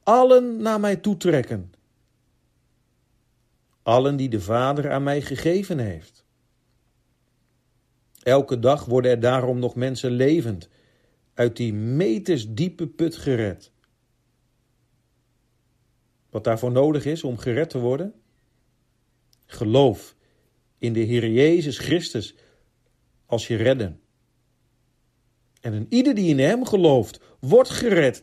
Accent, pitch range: Dutch, 120-140 Hz